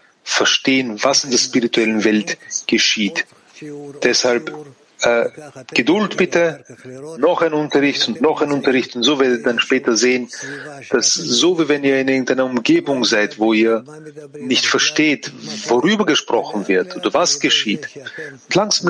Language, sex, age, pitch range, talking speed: English, male, 40-59, 115-145 Hz, 145 wpm